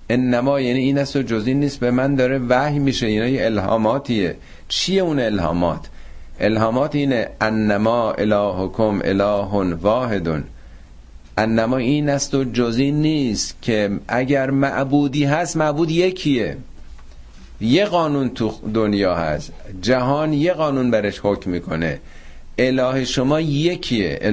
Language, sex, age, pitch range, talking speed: Persian, male, 50-69, 95-140 Hz, 125 wpm